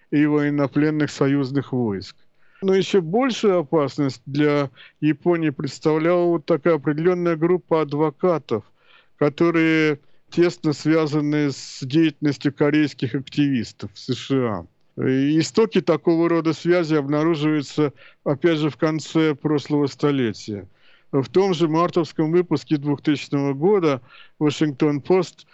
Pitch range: 145-165 Hz